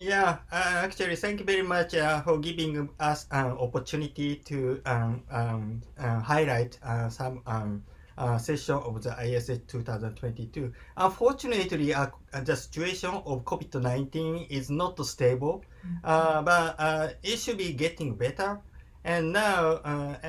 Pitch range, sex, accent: 125-160 Hz, male, Japanese